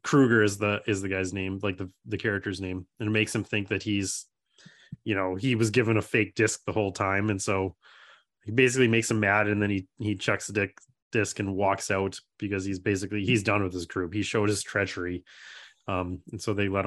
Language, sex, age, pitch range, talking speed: English, male, 20-39, 100-125 Hz, 230 wpm